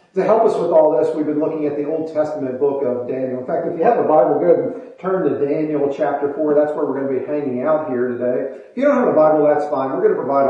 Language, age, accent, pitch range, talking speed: English, 40-59, American, 135-175 Hz, 305 wpm